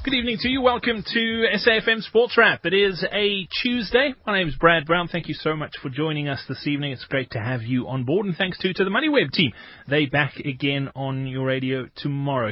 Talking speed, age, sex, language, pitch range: 230 wpm, 30-49, male, English, 145-195 Hz